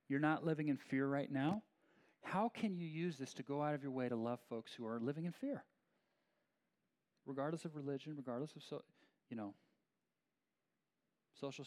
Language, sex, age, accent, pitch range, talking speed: English, male, 40-59, American, 125-160 Hz, 180 wpm